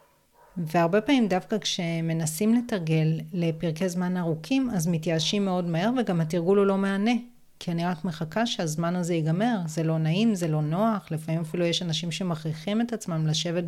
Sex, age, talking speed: female, 30-49, 165 wpm